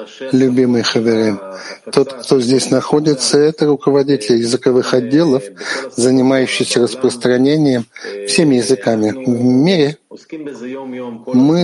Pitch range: 120-150 Hz